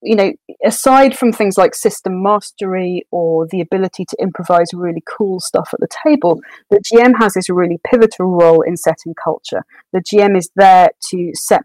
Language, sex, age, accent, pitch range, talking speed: English, female, 30-49, British, 170-205 Hz, 180 wpm